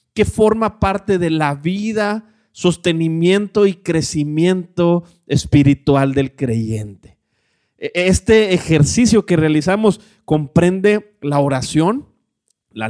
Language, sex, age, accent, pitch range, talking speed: Spanish, male, 30-49, Mexican, 130-180 Hz, 95 wpm